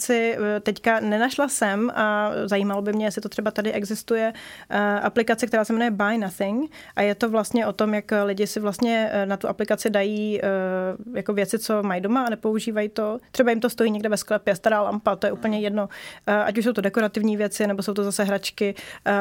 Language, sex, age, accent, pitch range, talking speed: Czech, female, 20-39, native, 200-220 Hz, 200 wpm